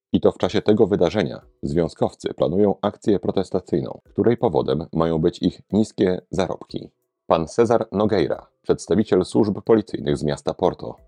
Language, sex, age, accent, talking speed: Polish, male, 40-59, native, 140 wpm